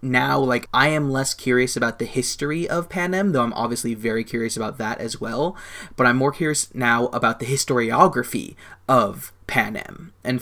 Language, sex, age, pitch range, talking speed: English, male, 20-39, 120-135 Hz, 180 wpm